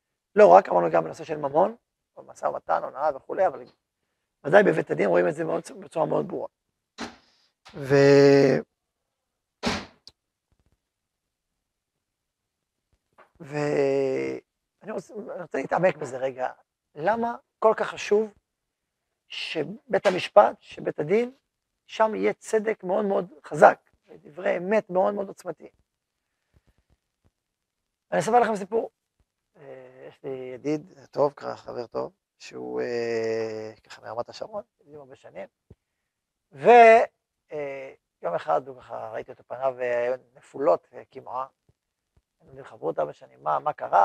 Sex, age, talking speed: male, 40-59, 110 wpm